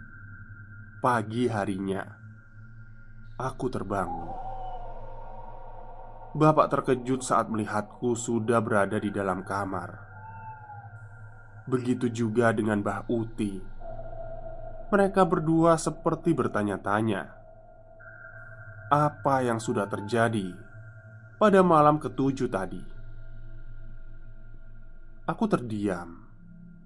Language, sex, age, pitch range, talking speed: Indonesian, male, 20-39, 110-130 Hz, 70 wpm